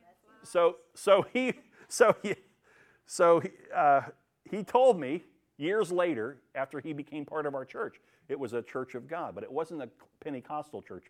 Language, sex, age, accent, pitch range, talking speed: English, male, 50-69, American, 145-215 Hz, 175 wpm